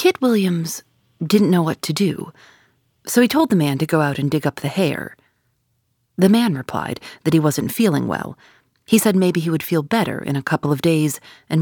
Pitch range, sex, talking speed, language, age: 130-205 Hz, female, 210 wpm, English, 40-59